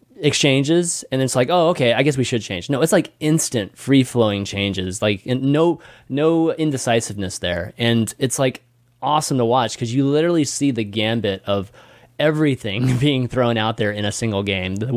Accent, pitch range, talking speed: American, 110-150 Hz, 190 wpm